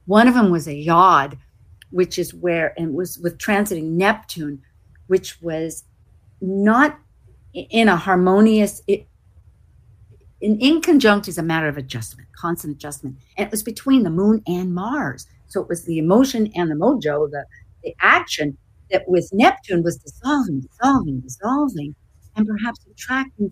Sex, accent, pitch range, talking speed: female, American, 125-205 Hz, 150 wpm